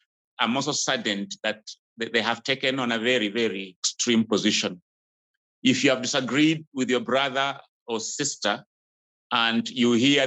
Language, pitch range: English, 105-145 Hz